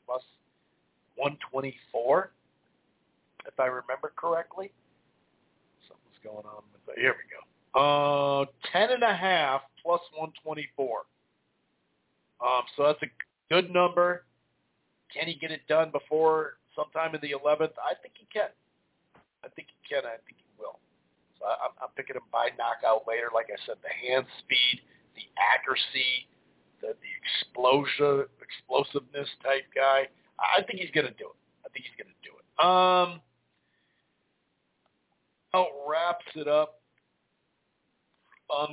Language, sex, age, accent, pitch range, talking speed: English, male, 50-69, American, 130-155 Hz, 130 wpm